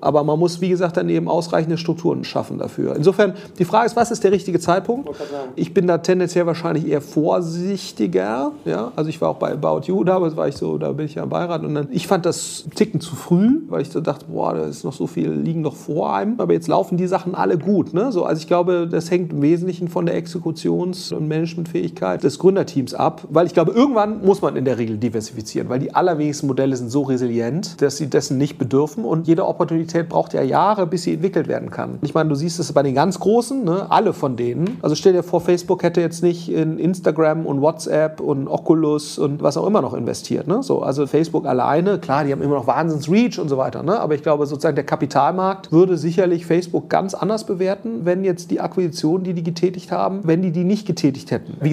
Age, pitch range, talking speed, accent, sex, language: 40-59, 150-185 Hz, 230 wpm, German, male, German